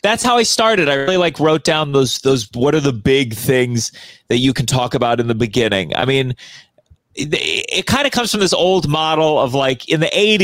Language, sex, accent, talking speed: English, male, American, 225 wpm